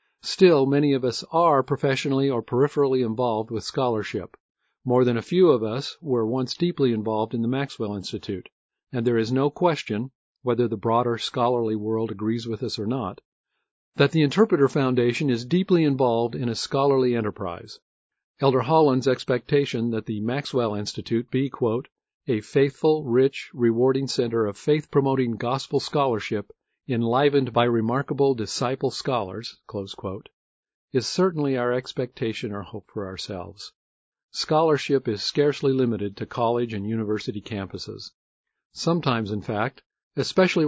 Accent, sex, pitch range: American, male, 110-135 Hz